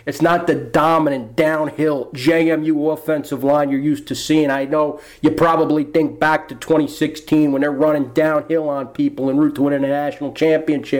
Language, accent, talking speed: English, American, 175 wpm